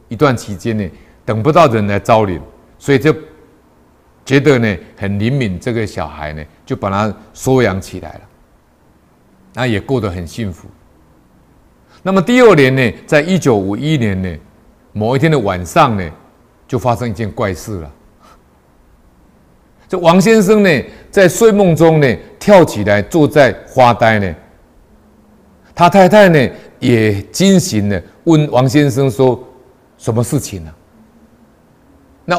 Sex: male